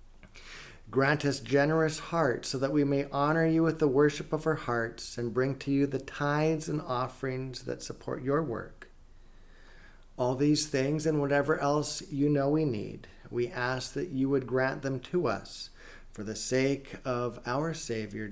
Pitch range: 105-135 Hz